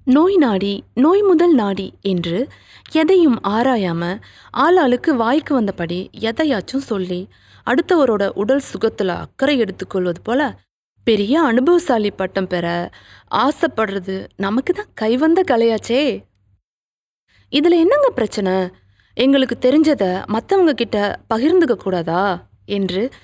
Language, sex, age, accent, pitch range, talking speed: Tamil, female, 30-49, native, 180-275 Hz, 100 wpm